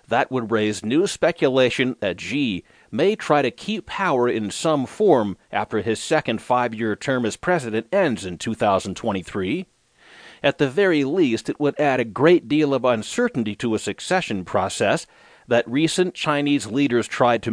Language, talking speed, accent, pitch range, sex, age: English, 160 wpm, American, 115-165 Hz, male, 40-59